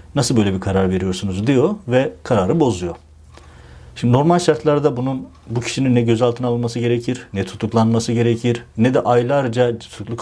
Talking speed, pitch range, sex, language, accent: 155 wpm, 105-130 Hz, male, Turkish, native